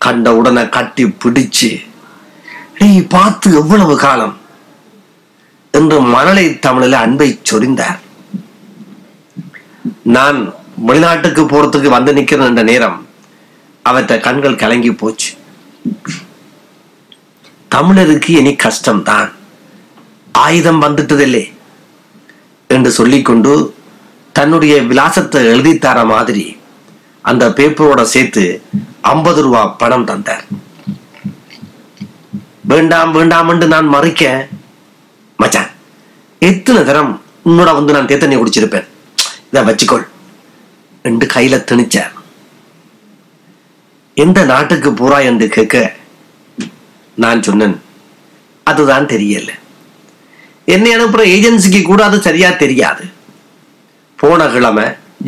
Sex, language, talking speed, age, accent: male, Tamil, 80 wpm, 60-79, native